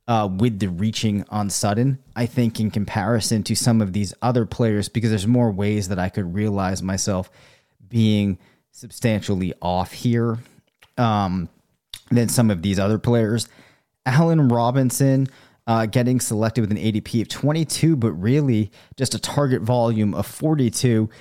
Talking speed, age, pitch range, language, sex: 155 wpm, 30-49, 100-120 Hz, English, male